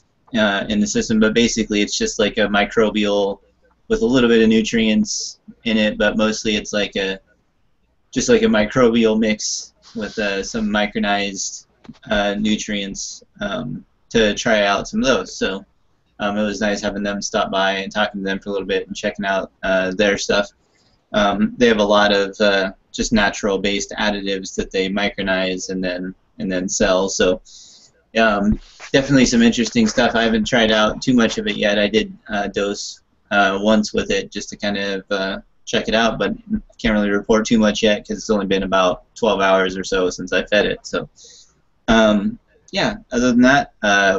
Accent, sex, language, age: American, male, English, 20-39